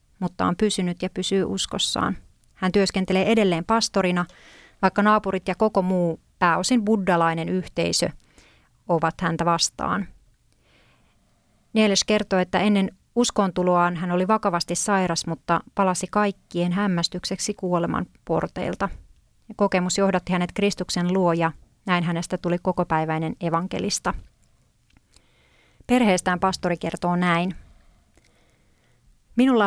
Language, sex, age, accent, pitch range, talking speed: Finnish, female, 30-49, native, 175-195 Hz, 105 wpm